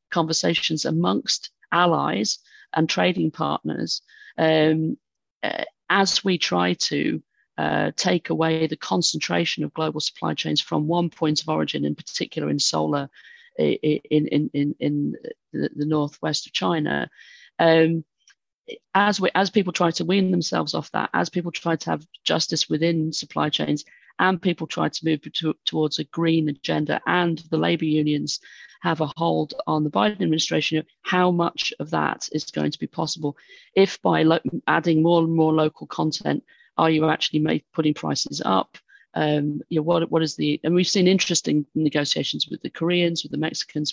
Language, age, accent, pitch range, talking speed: English, 40-59, British, 150-170 Hz, 160 wpm